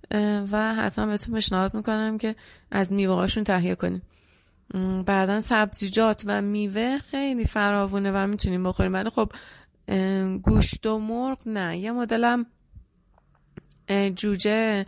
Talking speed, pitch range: 115 wpm, 195-225 Hz